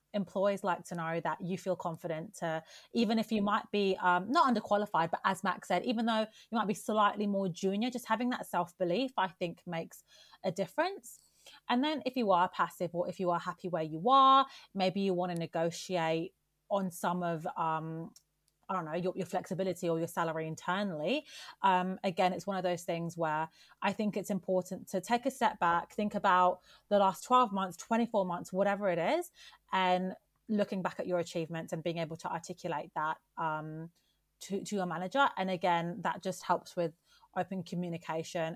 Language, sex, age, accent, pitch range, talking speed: English, female, 30-49, British, 170-205 Hz, 195 wpm